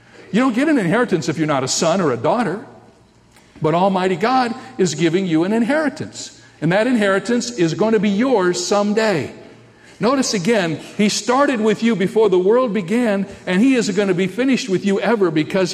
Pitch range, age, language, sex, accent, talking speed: 155-225 Hz, 60-79, English, male, American, 195 wpm